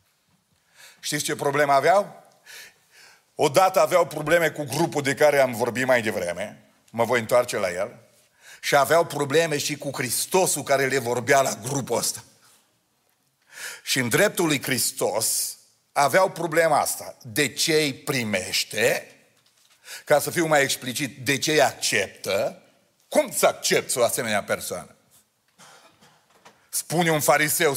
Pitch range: 150-225 Hz